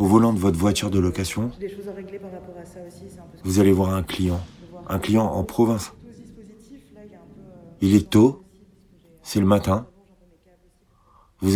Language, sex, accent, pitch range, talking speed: French, male, French, 90-110 Hz, 120 wpm